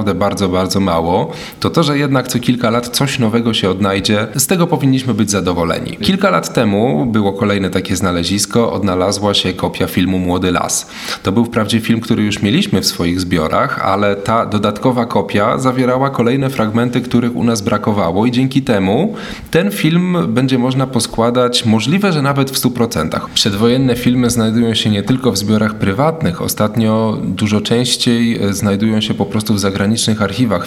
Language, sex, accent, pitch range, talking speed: Polish, male, native, 95-120 Hz, 165 wpm